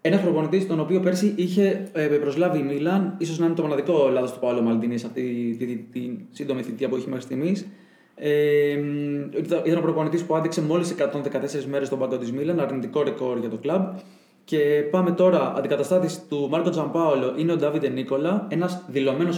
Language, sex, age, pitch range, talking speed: Greek, male, 20-39, 135-170 Hz, 190 wpm